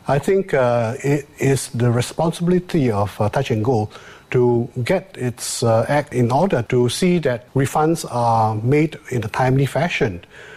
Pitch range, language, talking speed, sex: 115-150 Hz, English, 165 wpm, male